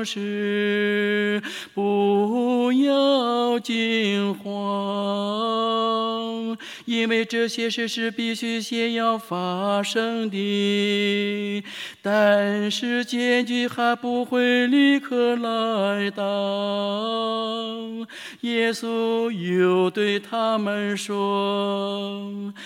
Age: 50-69